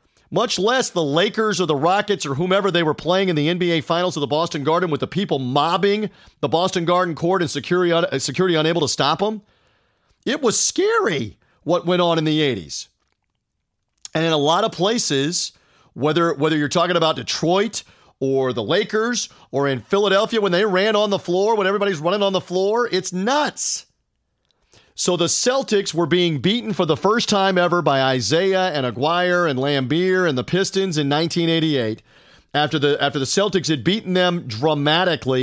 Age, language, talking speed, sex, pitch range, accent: 40-59, English, 180 wpm, male, 145-185 Hz, American